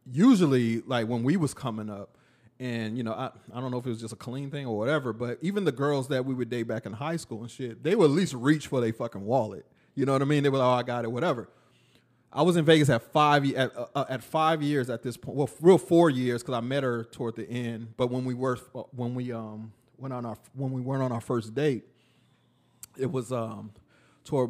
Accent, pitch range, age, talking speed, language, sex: American, 115-140 Hz, 30-49, 255 wpm, English, male